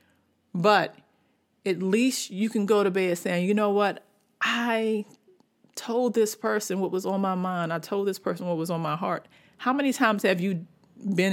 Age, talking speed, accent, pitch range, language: 40-59, 190 wpm, American, 180-220 Hz, English